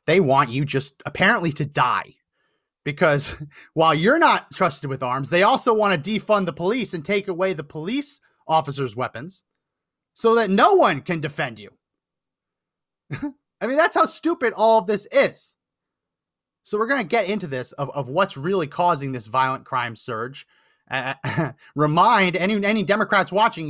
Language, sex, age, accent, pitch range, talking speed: English, male, 30-49, American, 135-205 Hz, 165 wpm